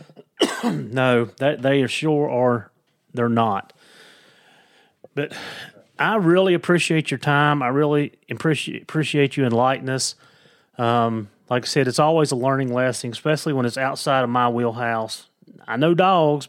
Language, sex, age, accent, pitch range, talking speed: English, male, 30-49, American, 120-140 Hz, 140 wpm